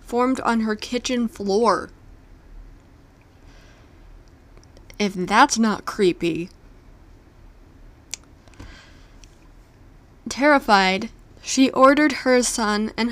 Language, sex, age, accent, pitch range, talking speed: English, female, 20-39, American, 165-230 Hz, 70 wpm